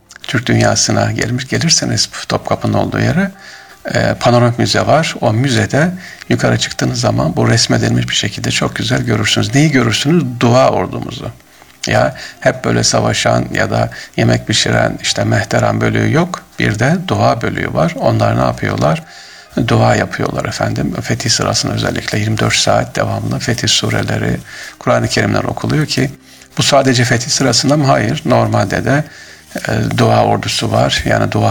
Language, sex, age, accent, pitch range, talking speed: Turkish, male, 50-69, native, 105-135 Hz, 145 wpm